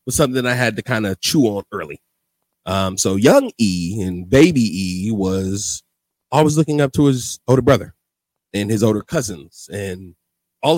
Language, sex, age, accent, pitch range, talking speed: English, male, 30-49, American, 100-135 Hz, 175 wpm